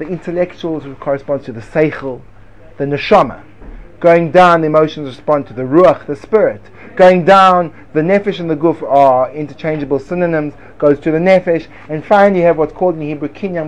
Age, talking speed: 30-49, 180 wpm